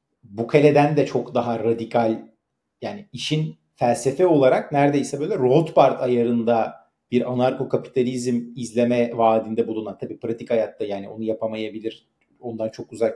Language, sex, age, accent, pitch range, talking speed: Turkish, male, 40-59, native, 115-135 Hz, 130 wpm